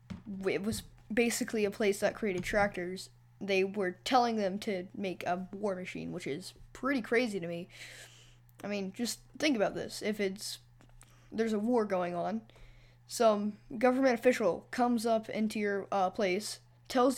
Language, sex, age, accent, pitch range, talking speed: English, female, 10-29, American, 175-225 Hz, 160 wpm